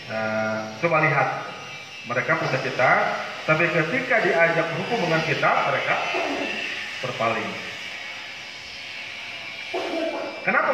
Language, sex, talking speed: Malay, male, 80 wpm